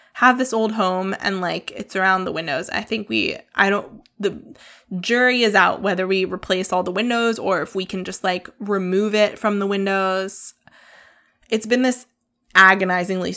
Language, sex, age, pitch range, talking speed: English, female, 20-39, 195-245 Hz, 180 wpm